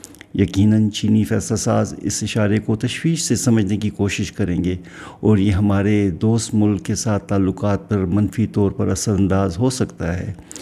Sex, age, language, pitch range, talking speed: male, 50-69, Urdu, 100-125 Hz, 175 wpm